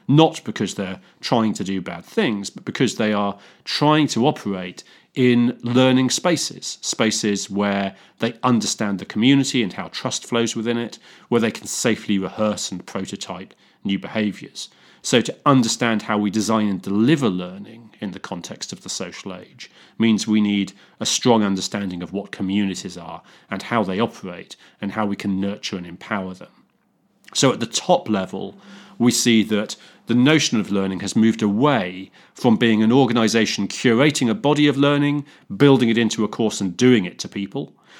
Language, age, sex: English, 30-49, male